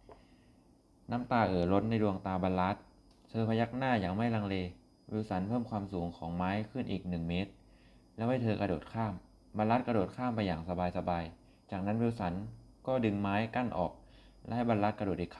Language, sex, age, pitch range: Thai, male, 20-39, 90-110 Hz